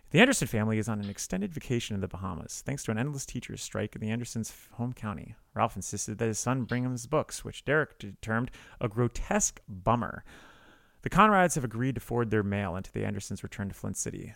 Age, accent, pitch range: 30-49, American, 110-145 Hz